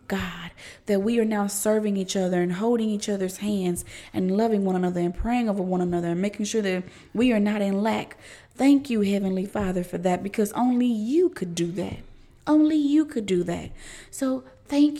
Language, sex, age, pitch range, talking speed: English, female, 20-39, 185-225 Hz, 200 wpm